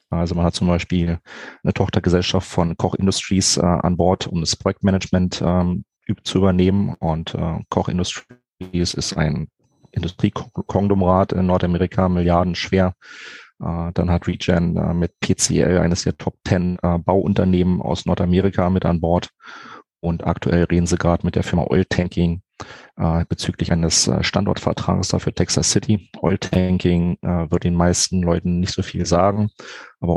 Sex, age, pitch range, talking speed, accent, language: male, 30-49, 85-95 Hz, 150 wpm, German, German